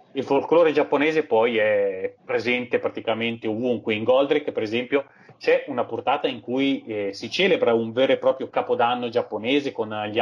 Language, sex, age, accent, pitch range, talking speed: Italian, male, 30-49, native, 115-185 Hz, 165 wpm